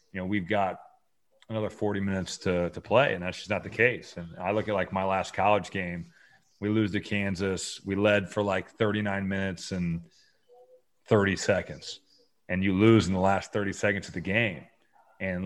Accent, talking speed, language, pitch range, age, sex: American, 195 wpm, English, 90-110 Hz, 30-49, male